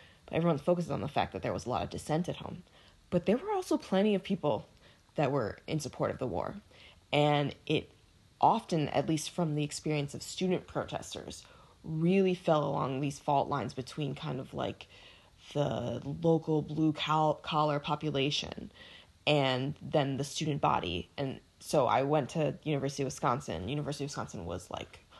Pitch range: 135-160 Hz